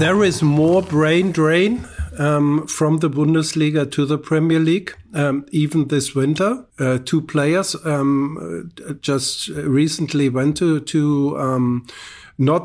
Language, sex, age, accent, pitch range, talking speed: English, male, 50-69, German, 130-155 Hz, 135 wpm